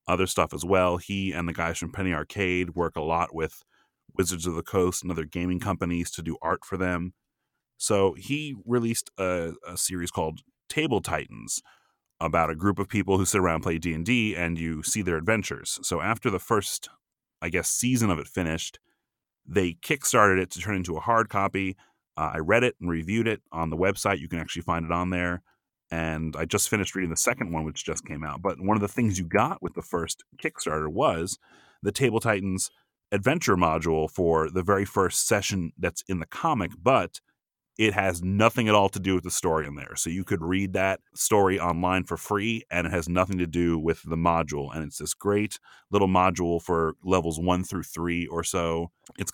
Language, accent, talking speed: English, American, 210 wpm